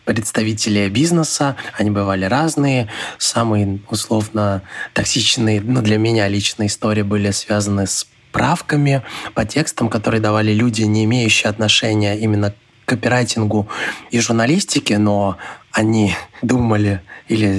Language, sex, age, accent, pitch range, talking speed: Russian, male, 20-39, native, 105-120 Hz, 115 wpm